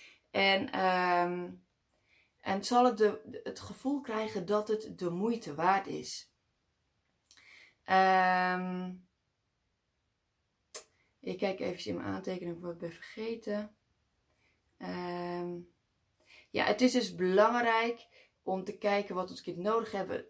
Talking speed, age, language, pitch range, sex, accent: 120 wpm, 20-39, Dutch, 170-210 Hz, female, Dutch